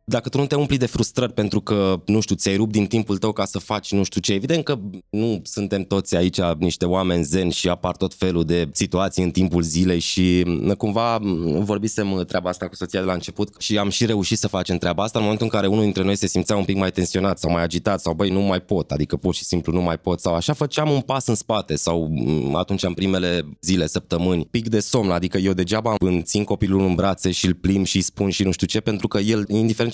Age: 20-39